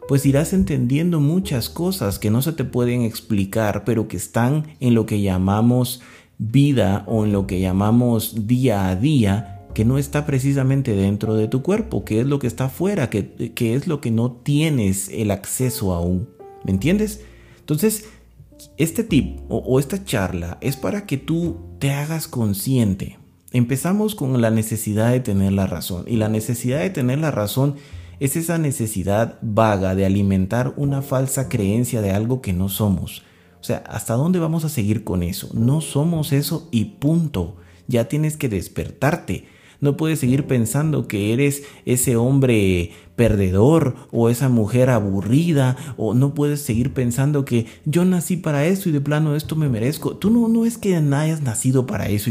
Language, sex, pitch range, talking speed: Spanish, male, 105-145 Hz, 175 wpm